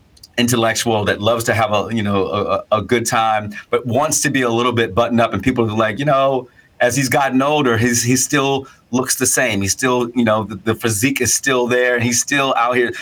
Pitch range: 105-125 Hz